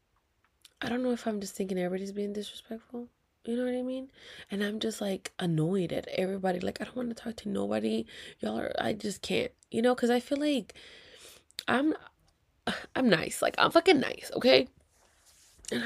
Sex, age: female, 20-39